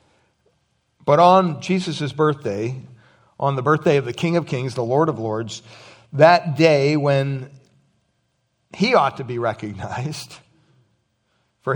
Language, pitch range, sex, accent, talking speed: English, 115-145 Hz, male, American, 130 wpm